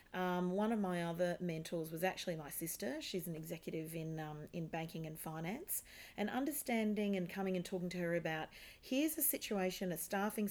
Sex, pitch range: female, 165-205 Hz